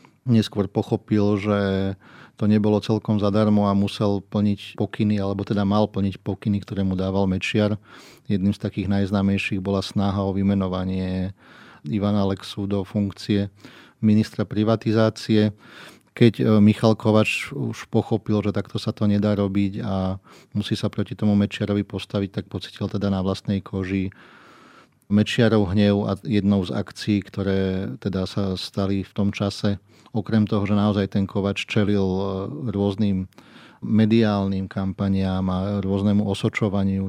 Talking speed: 135 wpm